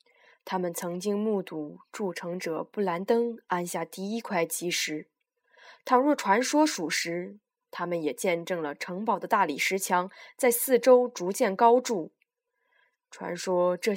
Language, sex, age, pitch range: Chinese, female, 20-39, 175-245 Hz